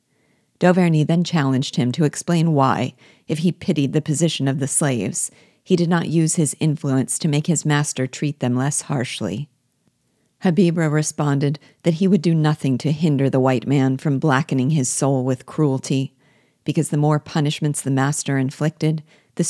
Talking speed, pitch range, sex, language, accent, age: 170 wpm, 135-160 Hz, female, English, American, 50-69